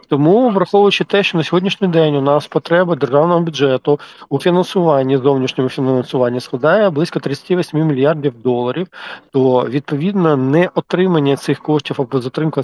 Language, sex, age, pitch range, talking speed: Ukrainian, male, 40-59, 135-175 Hz, 140 wpm